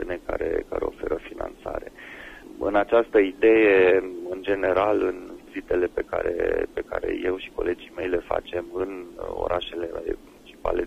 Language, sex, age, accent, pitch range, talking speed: Romanian, male, 30-49, native, 315-435 Hz, 125 wpm